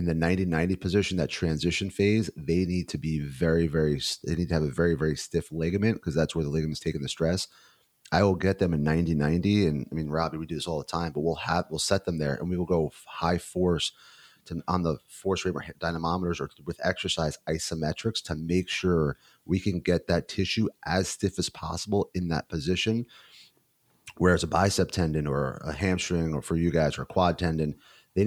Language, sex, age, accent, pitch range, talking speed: English, male, 30-49, American, 80-90 Hz, 210 wpm